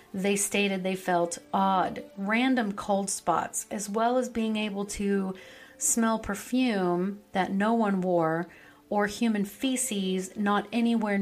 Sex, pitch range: female, 185-235 Hz